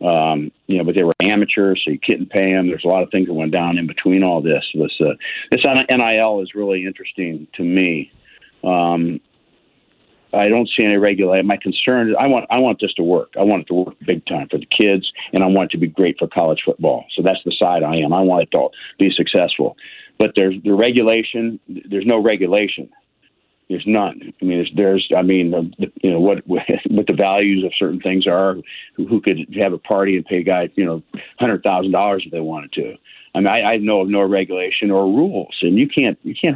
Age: 50-69